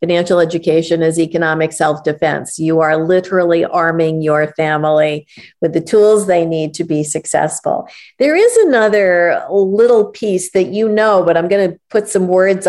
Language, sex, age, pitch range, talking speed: English, female, 50-69, 160-200 Hz, 160 wpm